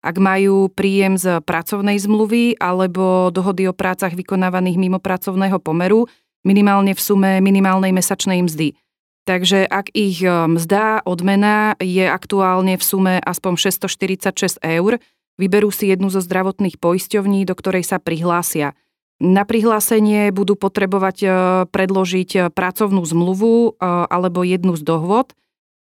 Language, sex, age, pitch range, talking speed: Slovak, female, 30-49, 185-200 Hz, 125 wpm